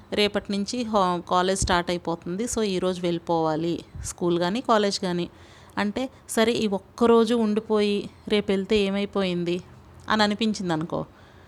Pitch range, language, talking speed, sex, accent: 180-220 Hz, Telugu, 125 wpm, female, native